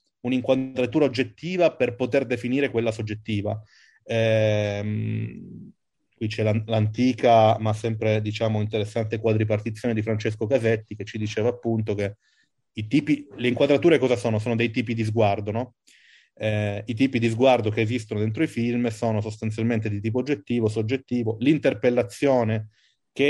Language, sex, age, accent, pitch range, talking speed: Italian, male, 30-49, native, 110-135 Hz, 140 wpm